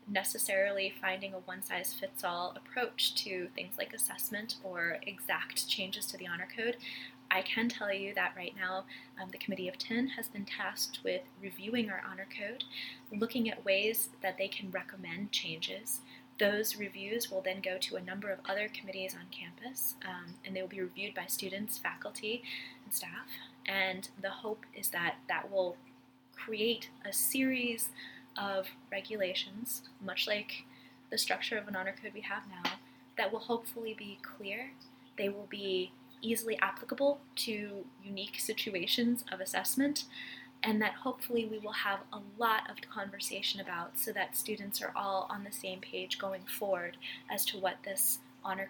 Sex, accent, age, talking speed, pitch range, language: female, American, 20-39, 165 wpm, 185-225 Hz, English